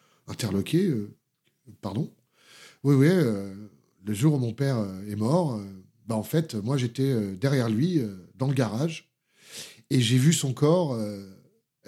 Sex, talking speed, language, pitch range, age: male, 165 wpm, French, 115-160 Hz, 40-59